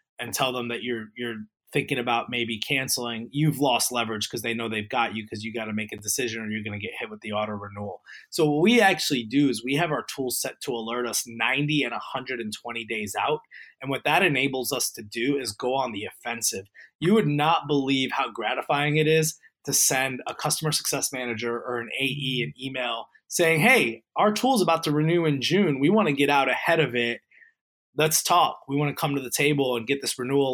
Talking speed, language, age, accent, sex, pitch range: 230 wpm, English, 20-39, American, male, 120-150 Hz